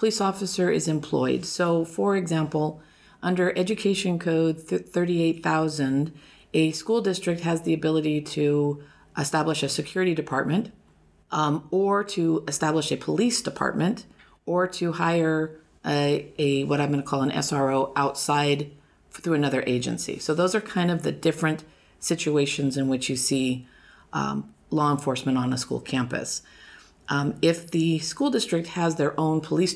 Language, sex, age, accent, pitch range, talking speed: English, female, 40-59, American, 140-170 Hz, 150 wpm